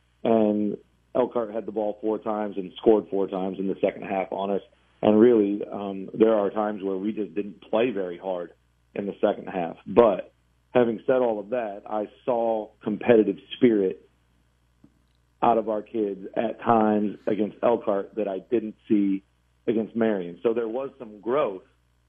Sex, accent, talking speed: male, American, 170 wpm